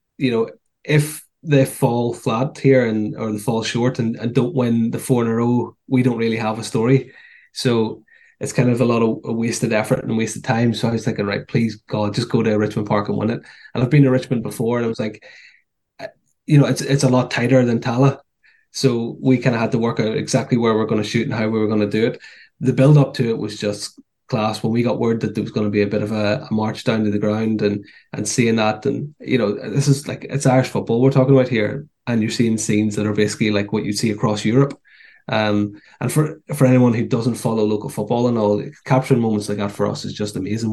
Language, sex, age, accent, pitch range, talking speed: English, male, 20-39, Irish, 110-130 Hz, 260 wpm